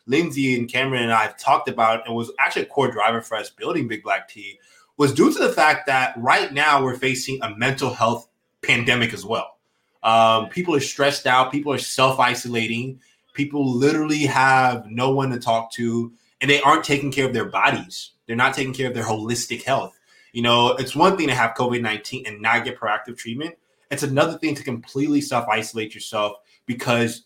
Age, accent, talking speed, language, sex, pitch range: 20-39, American, 195 wpm, English, male, 115-135 Hz